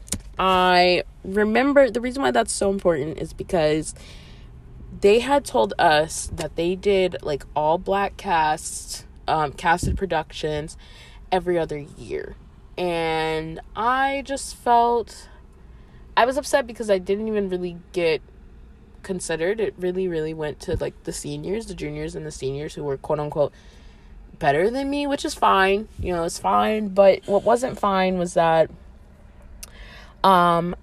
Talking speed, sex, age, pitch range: 145 wpm, female, 20-39, 150-200 Hz